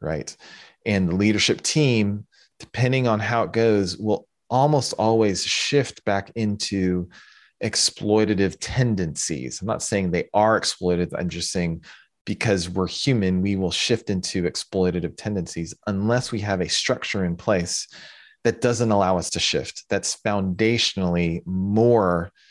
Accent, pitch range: American, 85-110 Hz